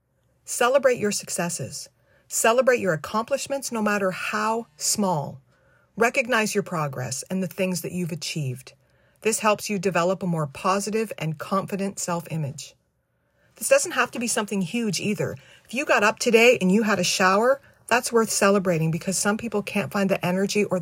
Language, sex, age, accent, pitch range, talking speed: English, female, 40-59, American, 165-220 Hz, 165 wpm